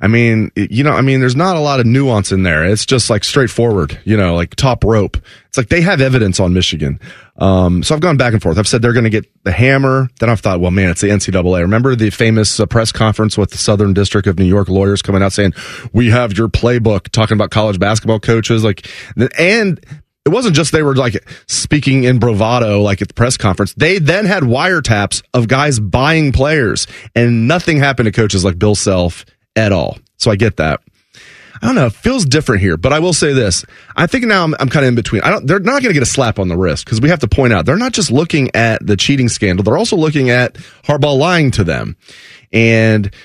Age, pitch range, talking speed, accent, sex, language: 30-49, 100-135 Hz, 240 wpm, American, male, English